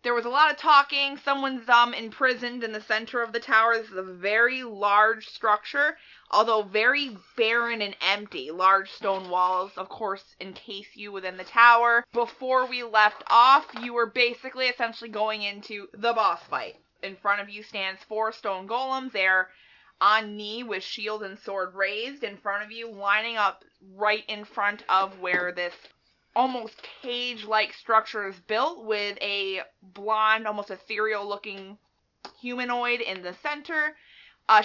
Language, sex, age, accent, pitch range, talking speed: English, female, 20-39, American, 205-245 Hz, 160 wpm